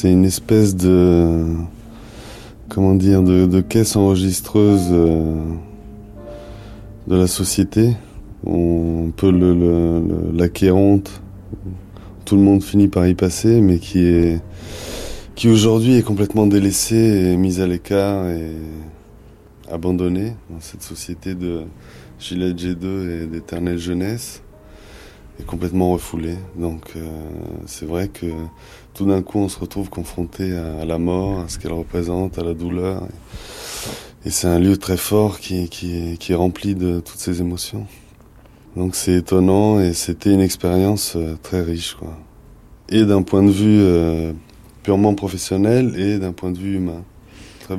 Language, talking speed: French, 145 wpm